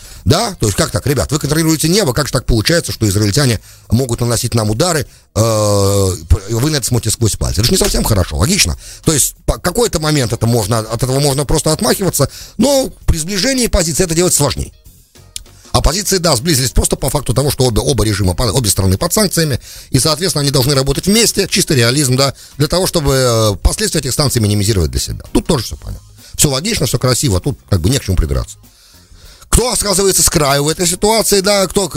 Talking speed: 200 wpm